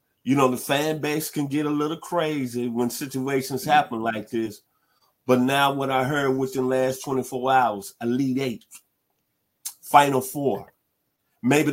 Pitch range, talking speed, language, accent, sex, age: 125-155 Hz, 155 wpm, English, American, male, 50-69